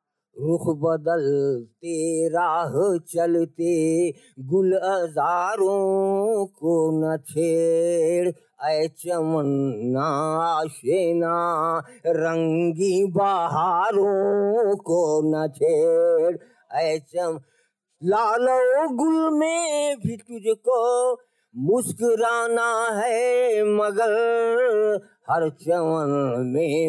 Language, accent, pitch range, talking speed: Hindi, native, 165-235 Hz, 60 wpm